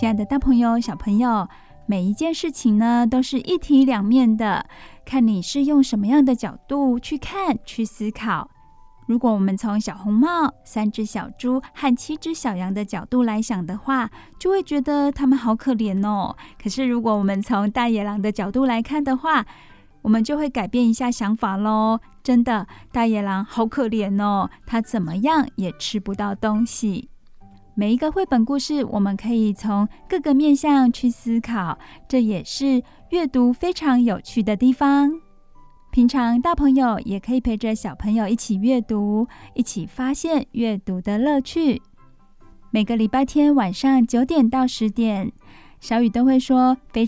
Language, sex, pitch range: Chinese, female, 210-265 Hz